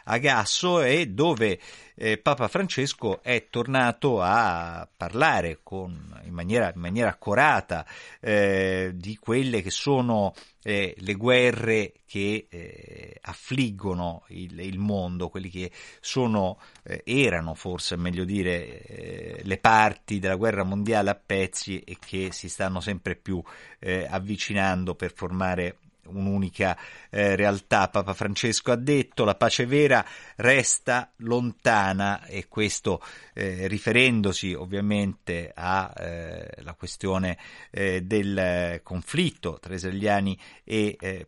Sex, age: male, 50-69